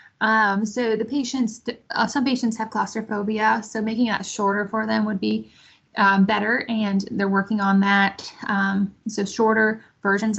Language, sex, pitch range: English, female, 200-235 Hz